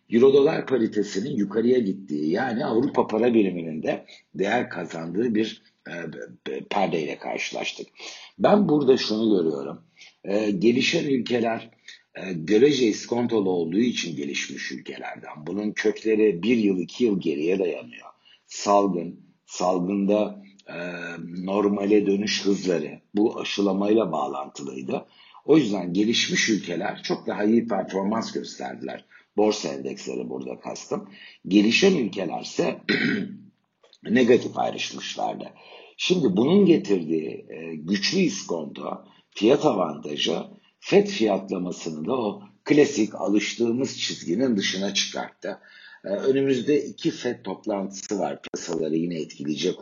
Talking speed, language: 100 wpm, Turkish